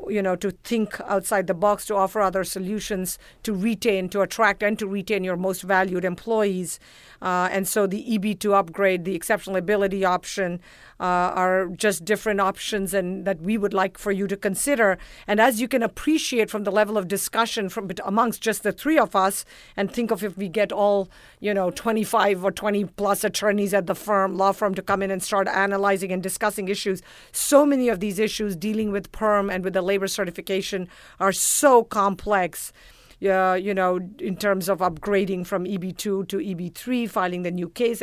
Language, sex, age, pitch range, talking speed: English, female, 50-69, 190-215 Hz, 190 wpm